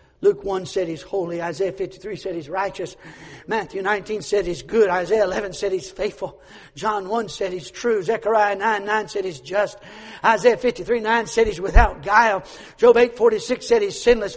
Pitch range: 215-280 Hz